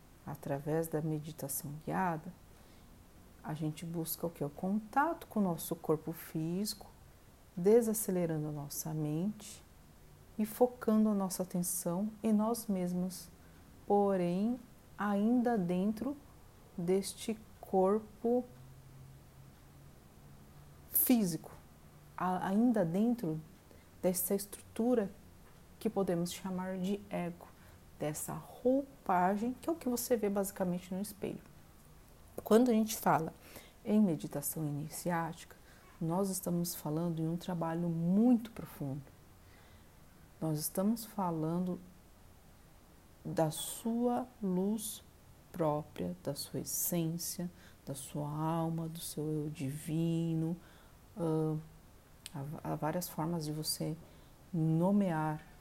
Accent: Brazilian